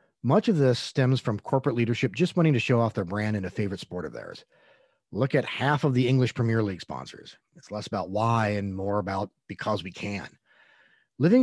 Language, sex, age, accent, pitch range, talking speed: English, male, 40-59, American, 105-130 Hz, 210 wpm